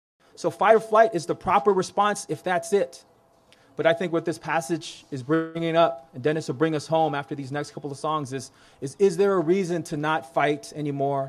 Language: English